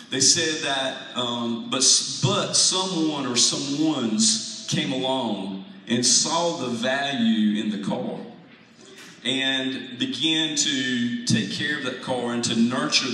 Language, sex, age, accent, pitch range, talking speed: English, male, 40-59, American, 115-150 Hz, 135 wpm